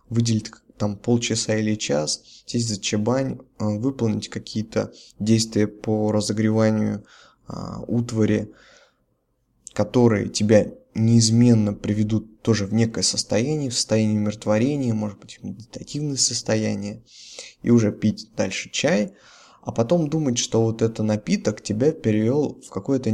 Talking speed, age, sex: 120 wpm, 20-39, male